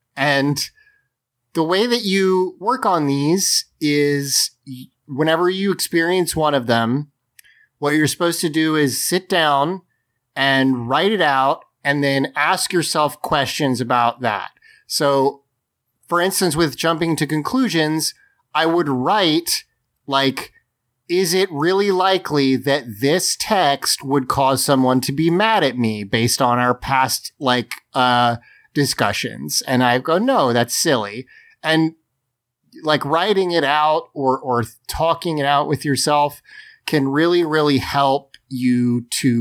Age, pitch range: 30-49, 125-165 Hz